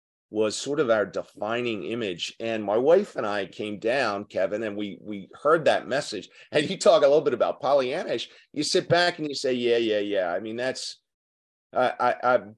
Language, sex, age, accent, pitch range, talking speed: English, male, 40-59, American, 110-150 Hz, 195 wpm